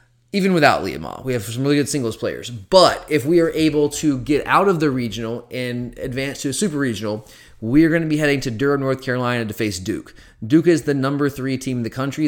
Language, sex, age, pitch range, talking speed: English, male, 30-49, 120-145 Hz, 245 wpm